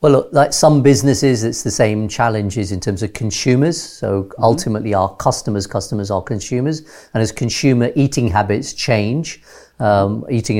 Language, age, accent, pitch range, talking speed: English, 50-69, British, 105-125 Hz, 160 wpm